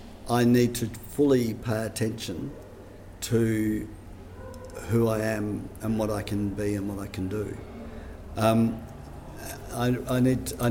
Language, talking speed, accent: English, 130 wpm, Australian